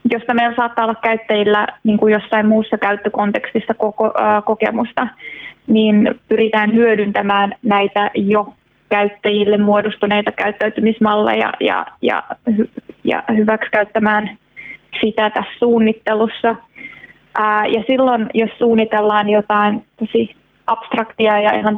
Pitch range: 215-230 Hz